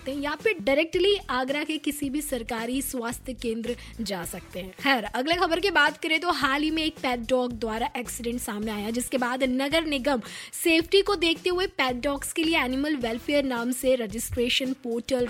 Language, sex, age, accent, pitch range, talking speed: Hindi, female, 20-39, native, 245-315 Hz, 185 wpm